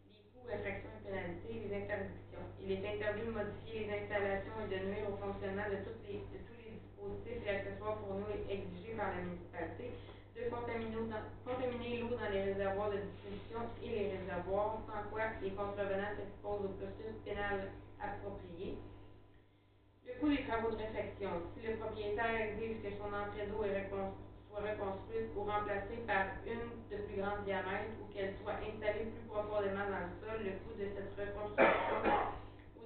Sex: female